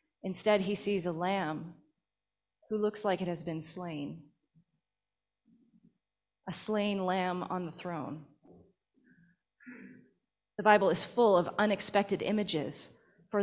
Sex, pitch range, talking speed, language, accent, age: female, 180-215 Hz, 115 wpm, English, American, 30-49